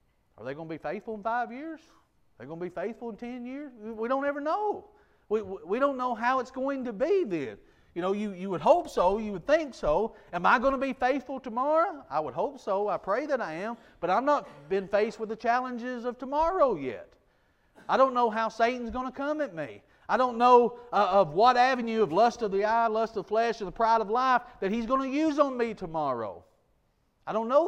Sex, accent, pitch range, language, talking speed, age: male, American, 170-255 Hz, English, 240 wpm, 40-59